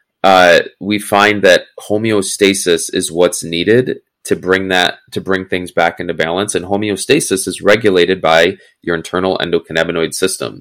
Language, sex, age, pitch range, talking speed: English, male, 20-39, 90-110 Hz, 145 wpm